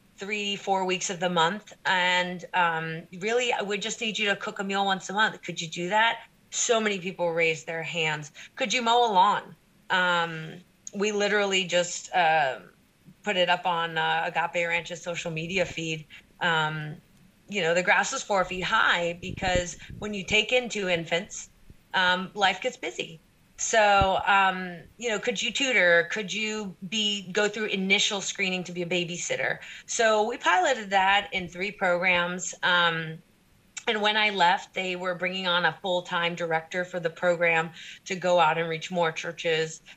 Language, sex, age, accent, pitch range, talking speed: English, female, 30-49, American, 170-200 Hz, 175 wpm